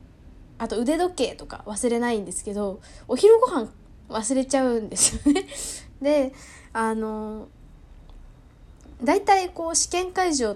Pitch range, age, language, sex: 205-290 Hz, 10-29, Japanese, female